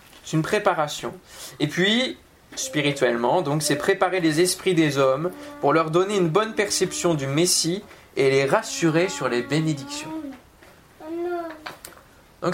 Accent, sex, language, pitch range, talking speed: French, male, French, 165-250 Hz, 135 wpm